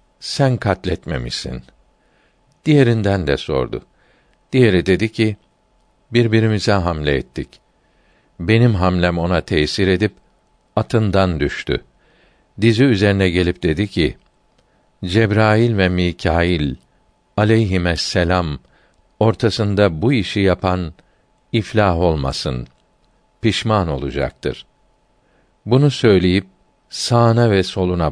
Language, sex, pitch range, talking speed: Turkish, male, 85-110 Hz, 85 wpm